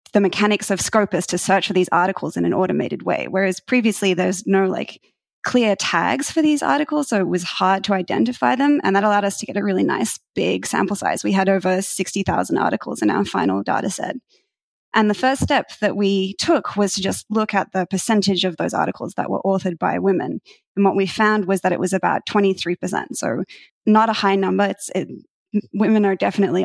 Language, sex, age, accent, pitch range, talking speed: English, female, 20-39, Australian, 190-220 Hz, 210 wpm